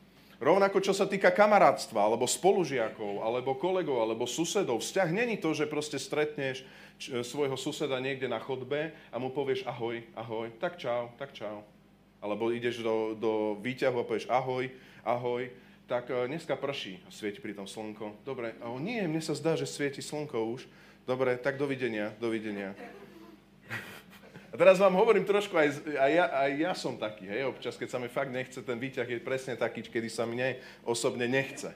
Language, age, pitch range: Slovak, 30-49, 115-150 Hz